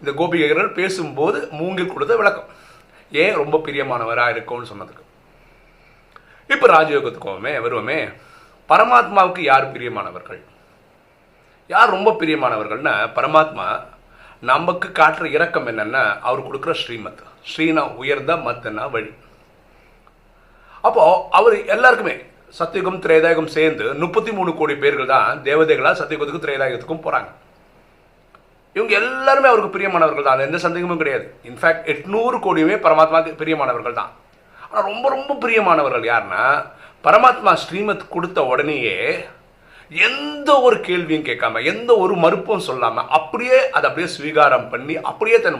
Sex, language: male, Tamil